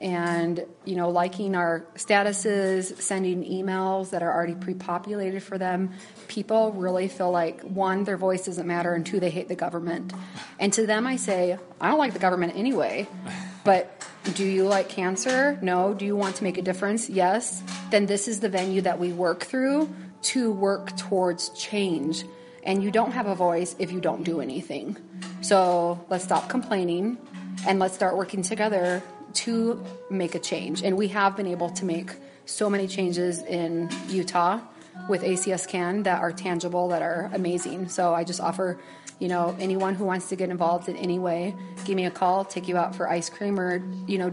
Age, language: 30-49, English